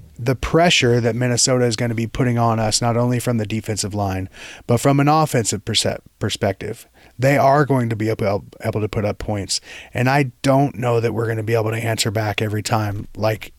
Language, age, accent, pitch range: English, 30-49, American, 110-125 Hz